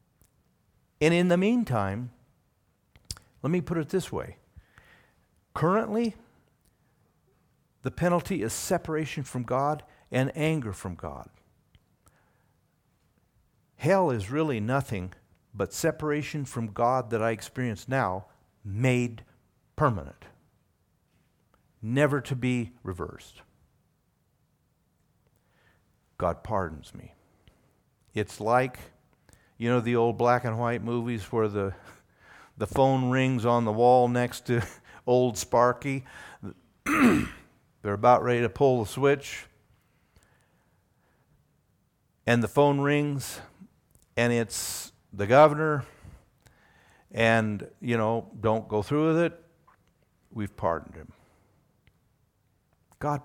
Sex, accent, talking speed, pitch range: male, American, 105 wpm, 110-145 Hz